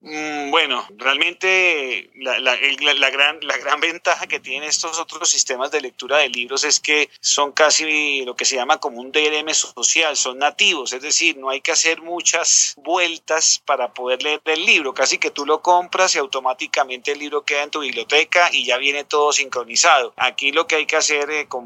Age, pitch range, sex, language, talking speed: 40-59, 135-160 Hz, male, Spanish, 195 wpm